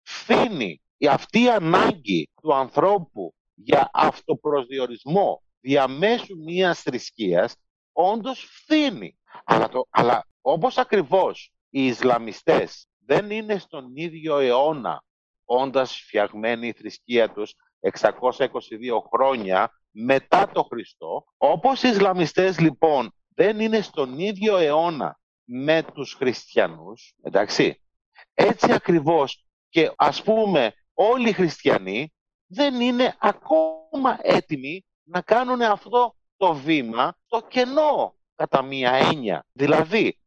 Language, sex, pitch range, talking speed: Greek, male, 135-225 Hz, 105 wpm